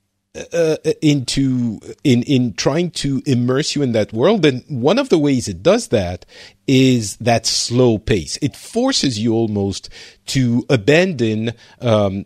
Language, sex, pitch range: English, male, 105-135 Hz